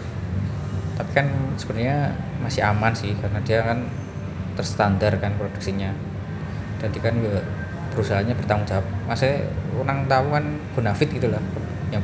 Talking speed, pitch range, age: 120 wpm, 100-130 Hz, 20-39